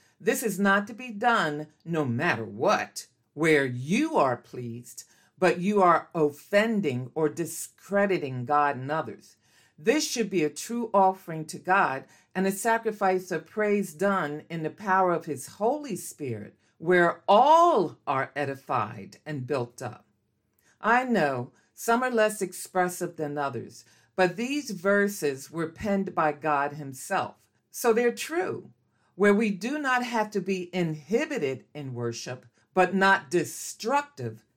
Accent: American